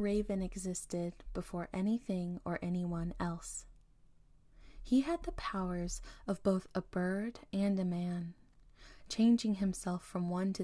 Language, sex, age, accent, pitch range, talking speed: English, female, 20-39, American, 175-210 Hz, 130 wpm